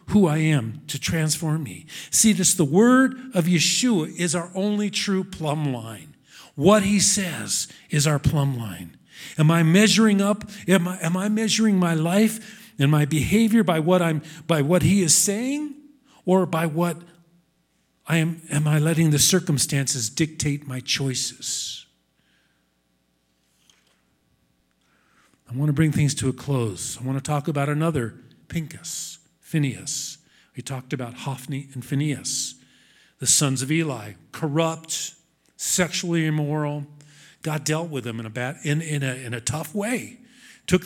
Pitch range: 135-185 Hz